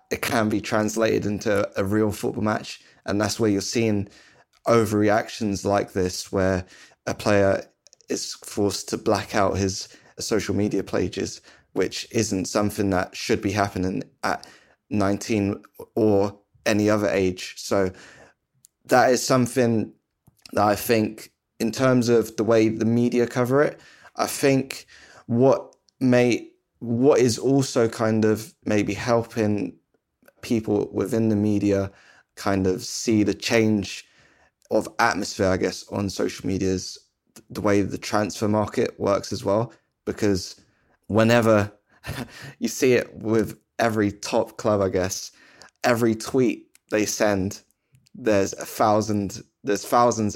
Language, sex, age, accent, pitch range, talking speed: English, male, 20-39, British, 100-115 Hz, 135 wpm